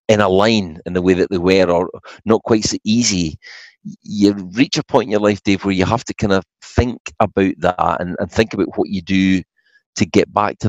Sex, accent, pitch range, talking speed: male, British, 90-110 Hz, 235 wpm